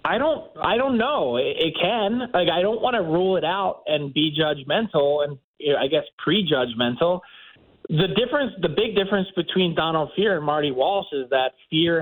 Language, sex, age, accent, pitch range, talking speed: English, male, 20-39, American, 145-180 Hz, 195 wpm